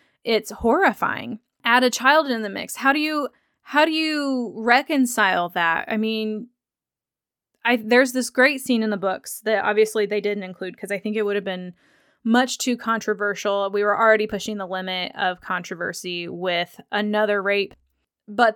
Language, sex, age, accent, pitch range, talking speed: English, female, 20-39, American, 200-250 Hz, 170 wpm